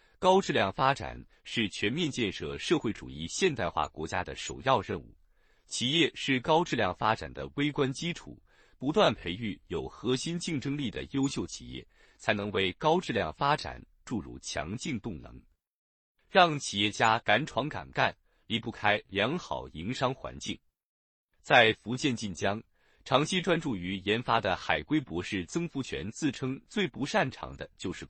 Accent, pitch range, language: native, 95-145 Hz, Chinese